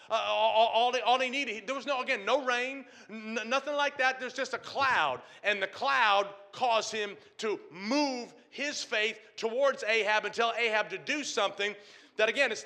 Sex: male